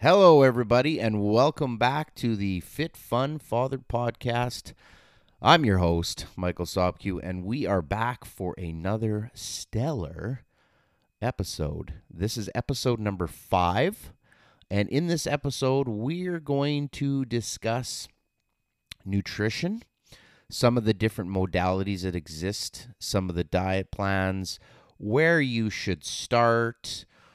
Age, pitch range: 30-49, 85-115 Hz